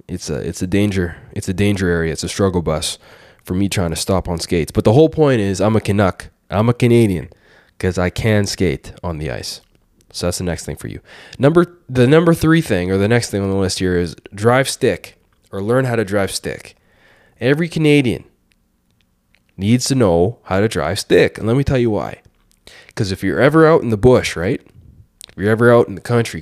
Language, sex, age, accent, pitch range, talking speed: English, male, 20-39, American, 90-130 Hz, 225 wpm